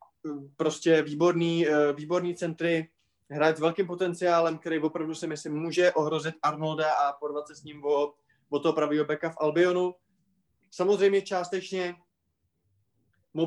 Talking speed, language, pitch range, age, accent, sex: 130 wpm, Czech, 145-170 Hz, 20-39, native, male